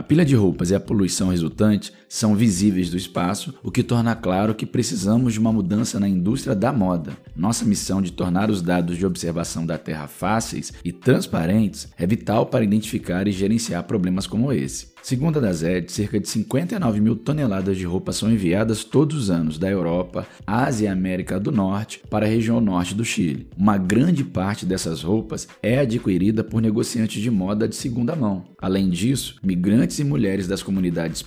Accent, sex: Brazilian, male